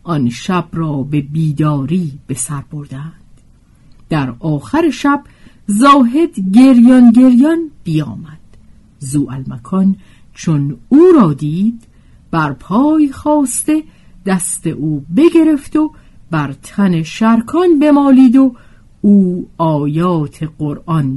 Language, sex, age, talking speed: Persian, female, 50-69, 100 wpm